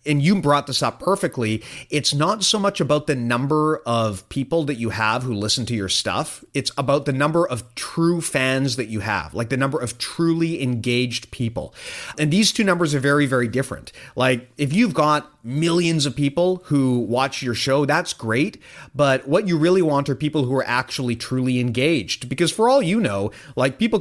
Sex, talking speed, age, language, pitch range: male, 200 wpm, 30-49, English, 125-160 Hz